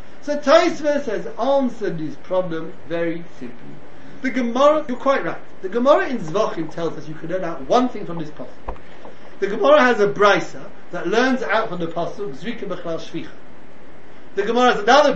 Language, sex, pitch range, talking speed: English, male, 185-275 Hz, 180 wpm